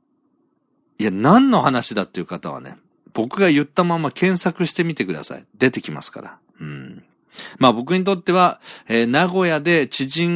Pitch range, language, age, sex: 105-170 Hz, Japanese, 40-59, male